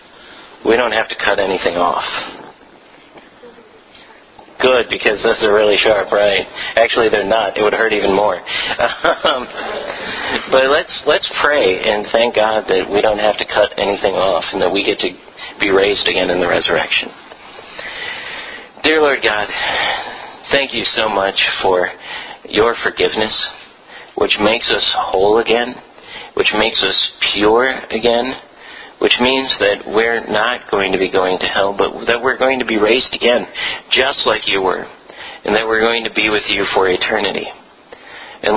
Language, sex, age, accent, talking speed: English, male, 40-59, American, 160 wpm